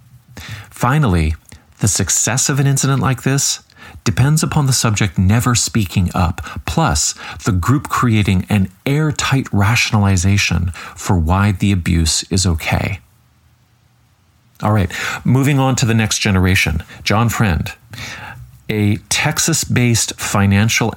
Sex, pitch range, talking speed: male, 90-115 Hz, 115 wpm